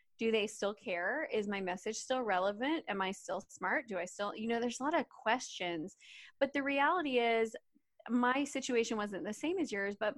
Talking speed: 205 wpm